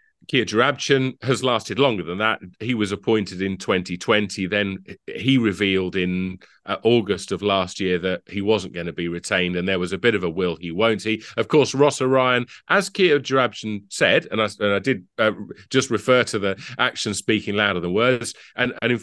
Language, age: English, 40-59